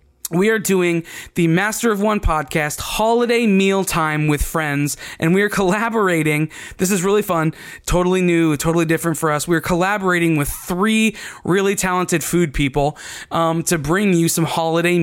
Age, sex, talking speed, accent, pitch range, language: 20-39, male, 170 wpm, American, 160-195 Hz, English